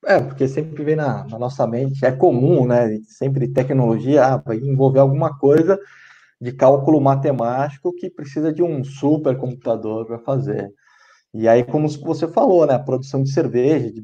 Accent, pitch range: Brazilian, 125-165 Hz